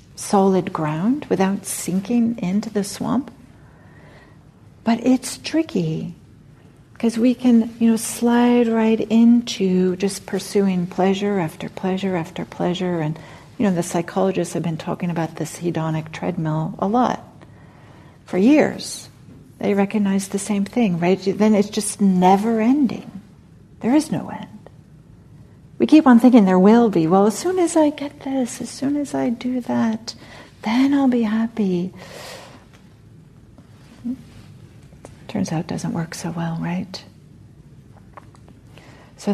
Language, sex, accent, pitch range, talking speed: English, female, American, 155-220 Hz, 135 wpm